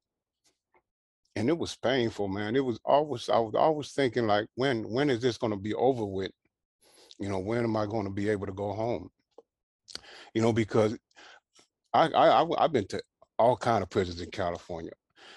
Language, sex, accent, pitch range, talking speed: English, male, American, 100-115 Hz, 185 wpm